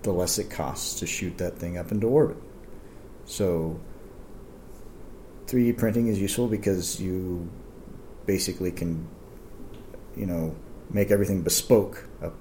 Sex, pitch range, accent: male, 85-105 Hz, American